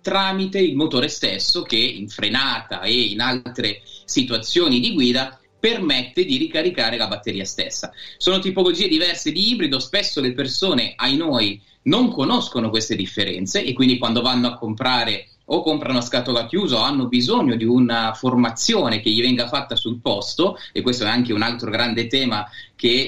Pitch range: 115-145 Hz